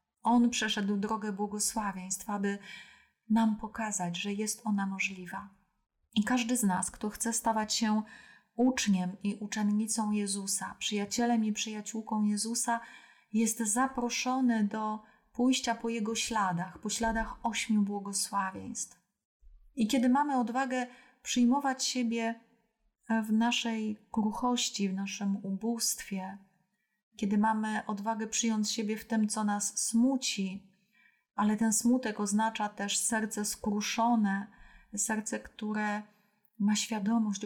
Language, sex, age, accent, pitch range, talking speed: Polish, female, 30-49, native, 200-225 Hz, 115 wpm